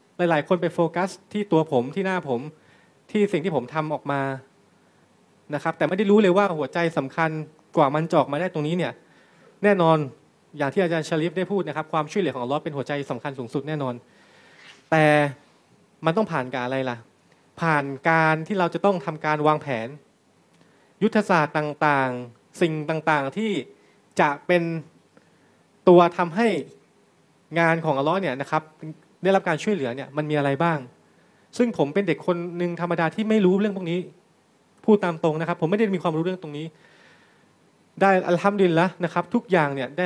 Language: Thai